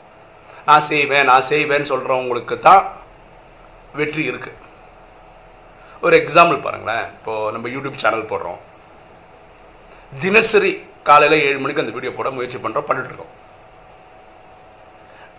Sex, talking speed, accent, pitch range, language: male, 100 wpm, native, 105-150 Hz, Tamil